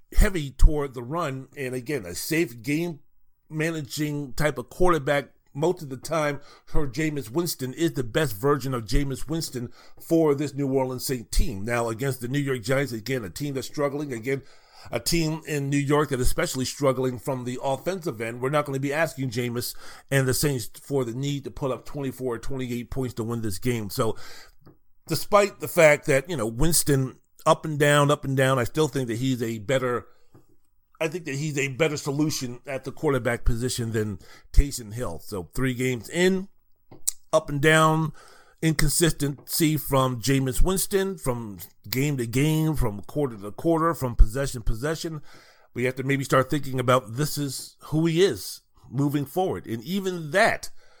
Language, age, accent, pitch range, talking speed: English, 40-59, American, 125-155 Hz, 185 wpm